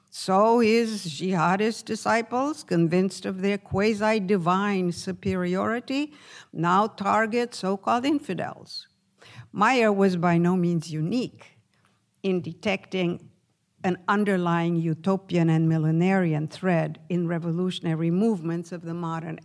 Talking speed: 100 wpm